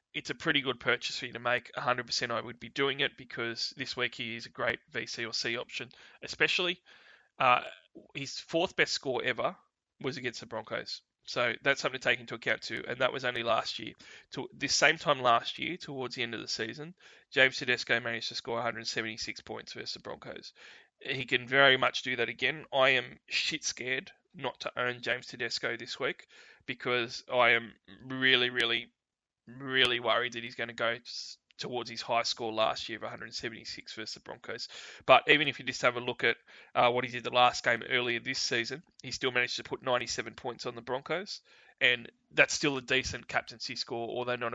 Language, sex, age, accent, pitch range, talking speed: English, male, 20-39, Australian, 115-130 Hz, 205 wpm